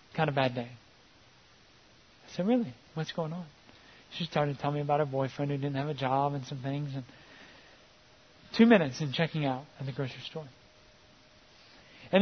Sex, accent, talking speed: male, American, 175 wpm